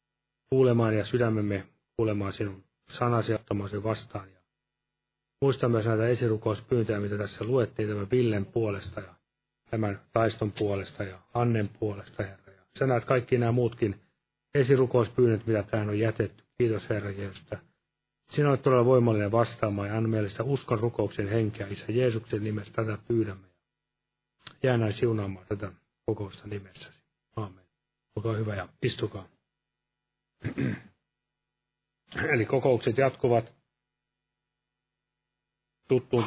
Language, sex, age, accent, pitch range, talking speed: Finnish, male, 30-49, native, 105-125 Hz, 115 wpm